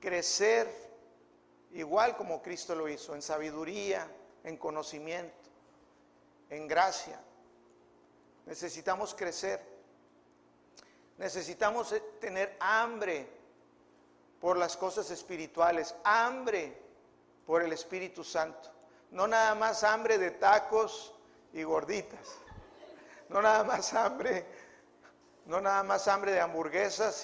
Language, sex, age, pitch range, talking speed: Spanish, male, 50-69, 155-220 Hz, 95 wpm